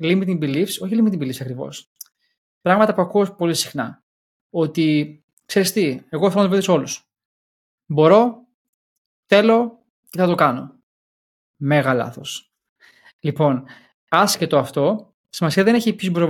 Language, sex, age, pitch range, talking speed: Greek, male, 20-39, 145-200 Hz, 135 wpm